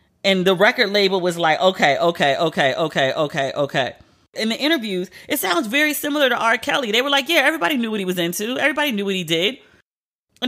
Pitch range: 180-275 Hz